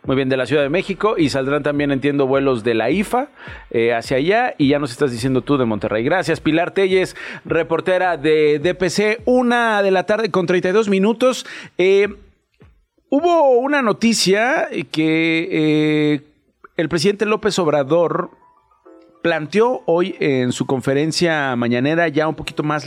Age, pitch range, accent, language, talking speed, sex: 40-59, 135-175 Hz, Mexican, Spanish, 155 wpm, male